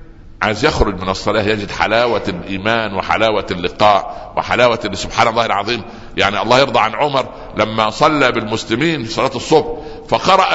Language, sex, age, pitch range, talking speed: Arabic, male, 60-79, 95-150 Hz, 140 wpm